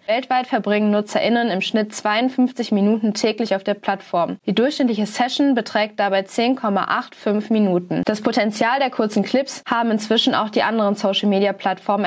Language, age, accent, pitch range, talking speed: German, 20-39, German, 200-235 Hz, 145 wpm